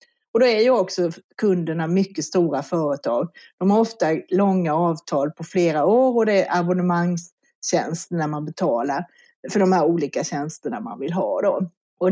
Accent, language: native, Swedish